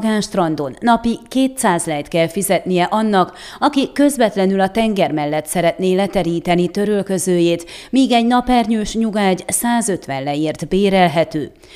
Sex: female